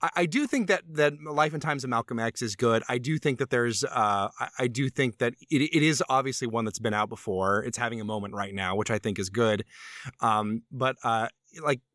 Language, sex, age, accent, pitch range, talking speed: English, male, 30-49, American, 105-140 Hz, 240 wpm